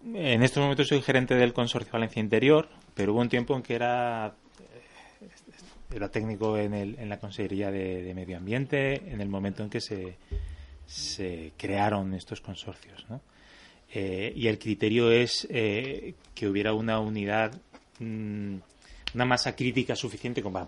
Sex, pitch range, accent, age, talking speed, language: male, 100-120 Hz, Spanish, 30-49, 160 wpm, Spanish